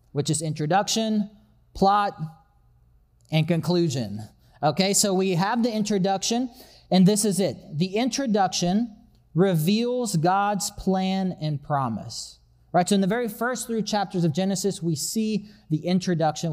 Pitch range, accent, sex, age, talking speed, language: 155-210 Hz, American, male, 30-49, 135 wpm, English